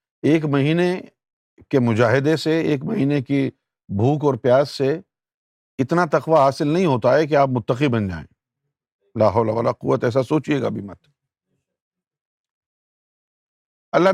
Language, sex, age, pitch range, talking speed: Urdu, male, 50-69, 125-170 Hz, 130 wpm